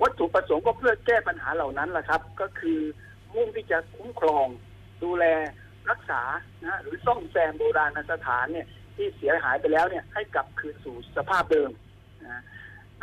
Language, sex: Thai, male